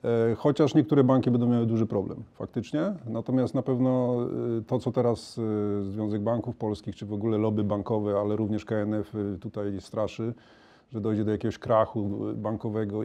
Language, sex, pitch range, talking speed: Polish, male, 105-130 Hz, 150 wpm